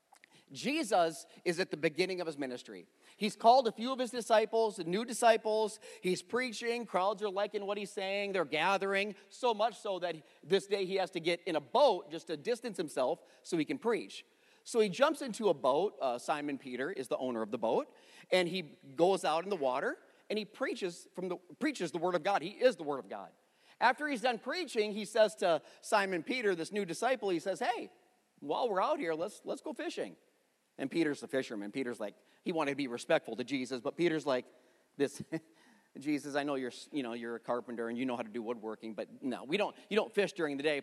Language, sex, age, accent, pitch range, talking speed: English, male, 40-59, American, 155-220 Hz, 225 wpm